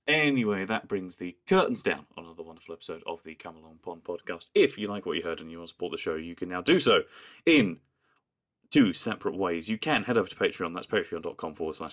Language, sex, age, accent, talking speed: English, male, 30-49, British, 235 wpm